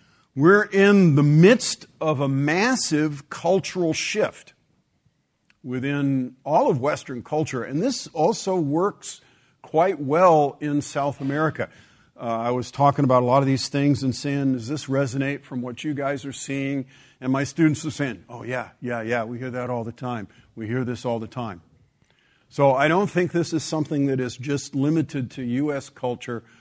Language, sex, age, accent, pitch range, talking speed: English, male, 50-69, American, 120-155 Hz, 180 wpm